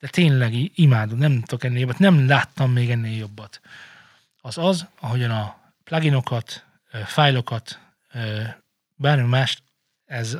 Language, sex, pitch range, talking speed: Hungarian, male, 120-160 Hz, 115 wpm